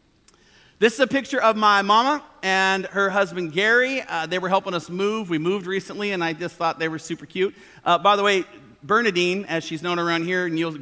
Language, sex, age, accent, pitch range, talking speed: English, male, 40-59, American, 145-200 Hz, 220 wpm